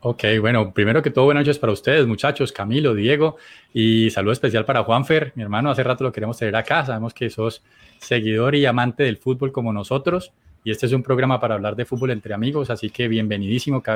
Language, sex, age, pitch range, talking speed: Spanish, male, 20-39, 110-140 Hz, 215 wpm